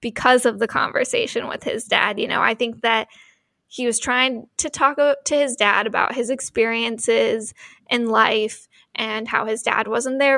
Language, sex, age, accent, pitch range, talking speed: English, female, 10-29, American, 235-280 Hz, 180 wpm